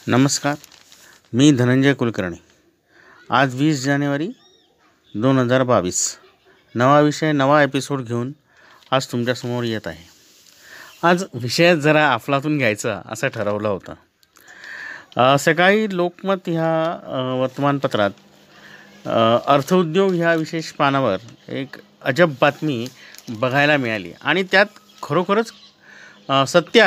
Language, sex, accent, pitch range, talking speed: Marathi, male, native, 130-175 Hz, 85 wpm